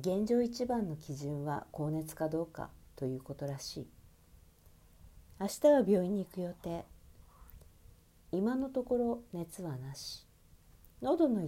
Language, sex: Japanese, female